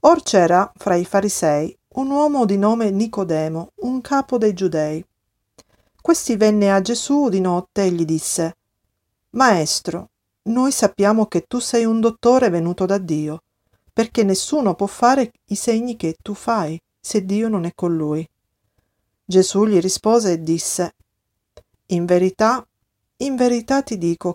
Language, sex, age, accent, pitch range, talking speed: Italian, female, 50-69, native, 165-215 Hz, 150 wpm